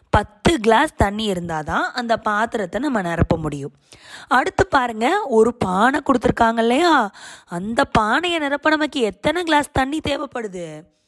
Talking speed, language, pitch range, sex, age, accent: 120 wpm, Tamil, 195-285 Hz, female, 20-39, native